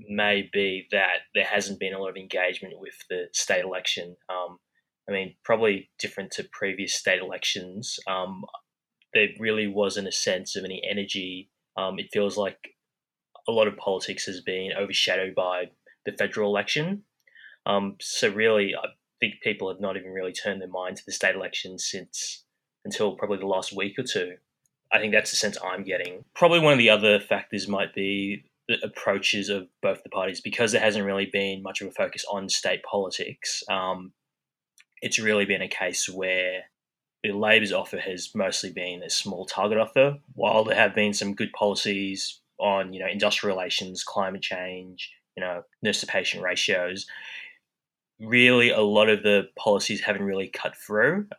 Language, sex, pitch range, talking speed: English, male, 95-105 Hz, 175 wpm